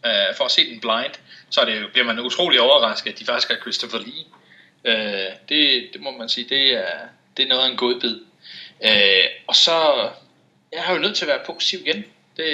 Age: 30-49